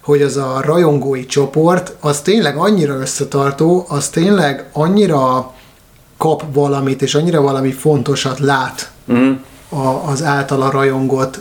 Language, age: Hungarian, 30-49